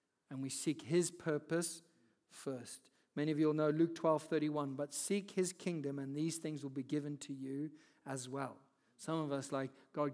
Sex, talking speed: male, 195 wpm